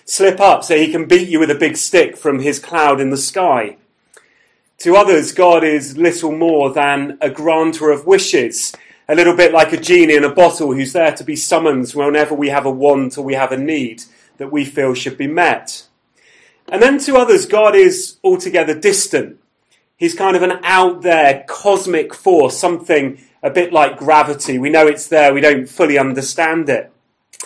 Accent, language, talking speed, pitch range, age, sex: British, English, 190 wpm, 150-235 Hz, 30-49, male